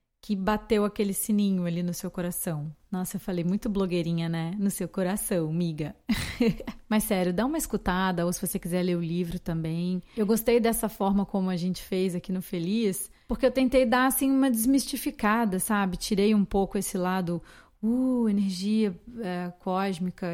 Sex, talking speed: female, 170 wpm